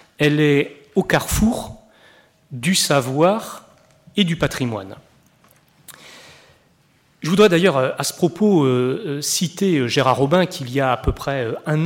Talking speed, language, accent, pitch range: 130 wpm, French, French, 135-190 Hz